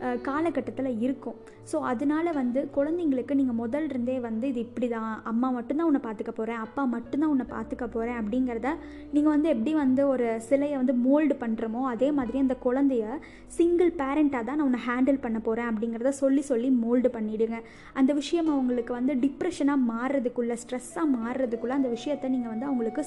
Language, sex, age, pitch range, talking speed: Tamil, female, 20-39, 235-280 Hz, 165 wpm